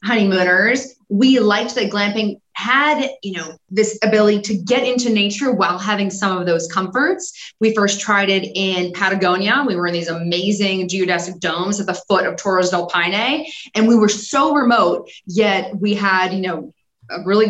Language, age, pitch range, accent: English, 20-39, 180-220 Hz, American